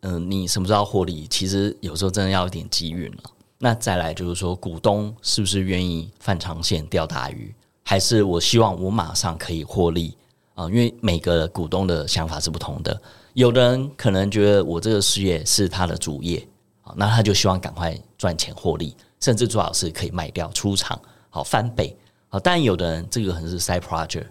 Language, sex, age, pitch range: Chinese, male, 30-49, 85-105 Hz